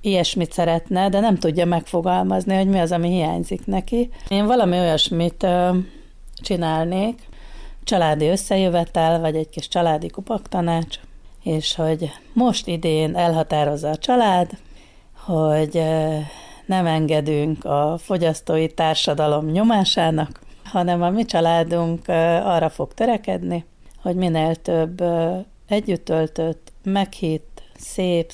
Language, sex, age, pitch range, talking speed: Hungarian, female, 40-59, 155-185 Hz, 105 wpm